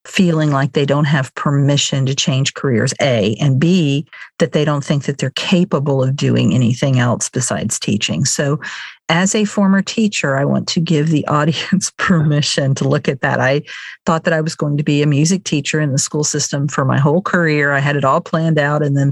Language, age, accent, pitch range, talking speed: English, 50-69, American, 140-165 Hz, 215 wpm